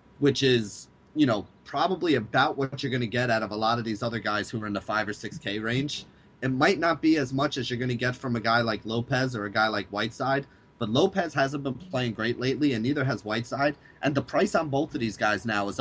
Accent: American